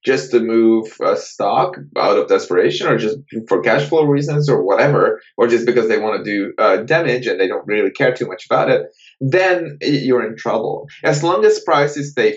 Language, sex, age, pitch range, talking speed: English, male, 20-39, 115-150 Hz, 215 wpm